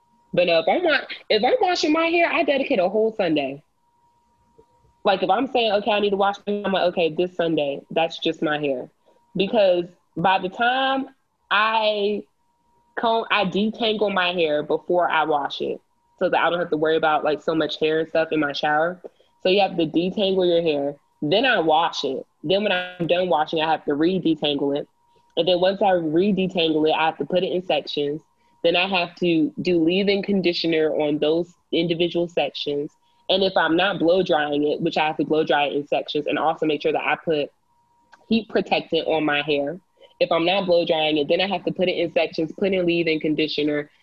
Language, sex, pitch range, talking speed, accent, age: English, female, 155-205 Hz, 205 wpm, American, 20-39